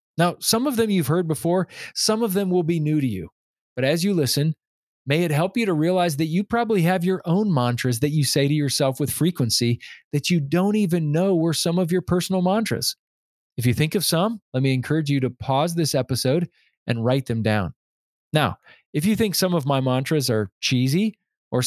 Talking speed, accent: 215 wpm, American